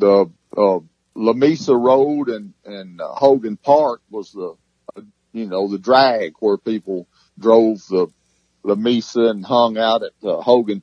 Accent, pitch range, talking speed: American, 95-115 Hz, 155 wpm